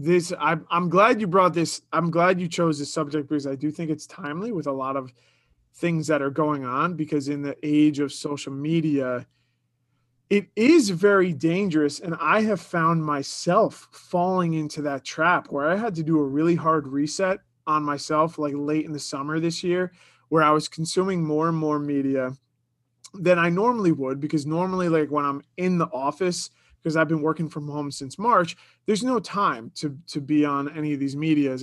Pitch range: 145-175 Hz